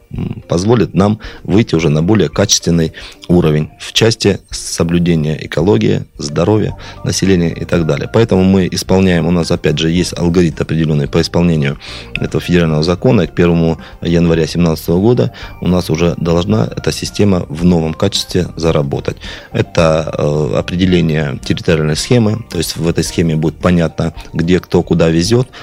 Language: Russian